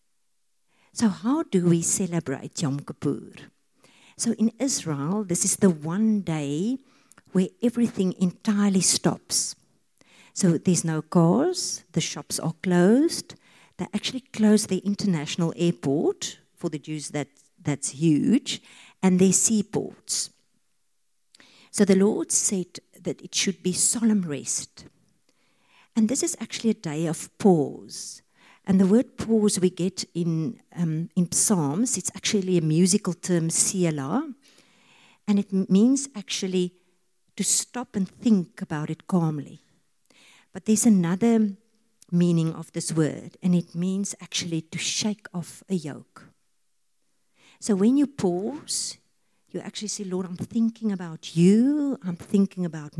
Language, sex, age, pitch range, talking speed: English, female, 50-69, 170-220 Hz, 135 wpm